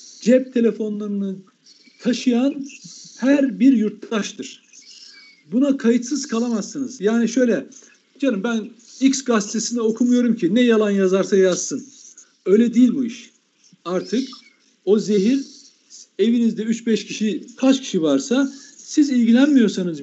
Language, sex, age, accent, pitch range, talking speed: Turkish, male, 60-79, native, 205-270 Hz, 110 wpm